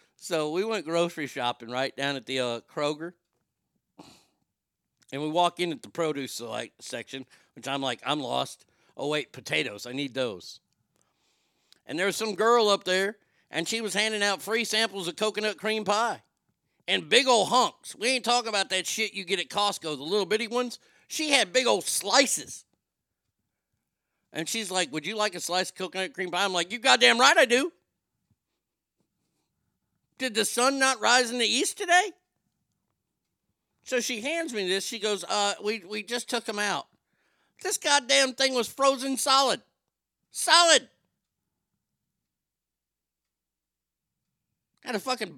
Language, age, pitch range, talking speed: English, 50-69, 165-240 Hz, 165 wpm